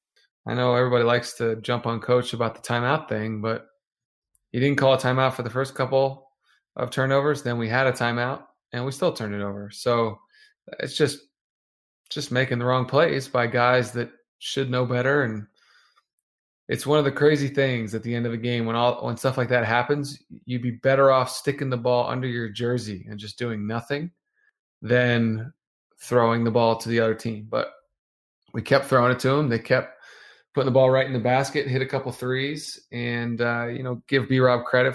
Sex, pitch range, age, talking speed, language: male, 115-135 Hz, 20-39, 205 wpm, English